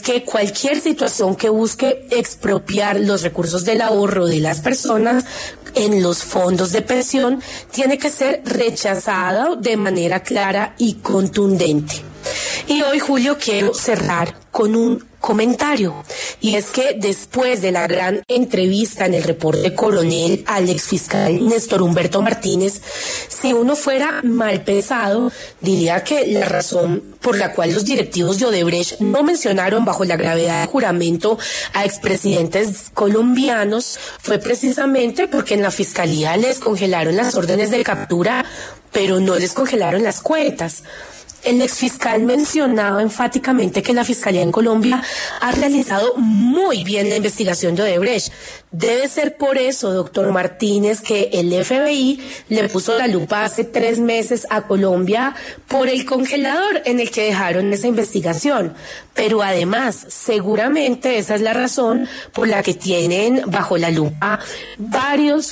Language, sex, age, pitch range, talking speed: Italian, female, 30-49, 185-250 Hz, 140 wpm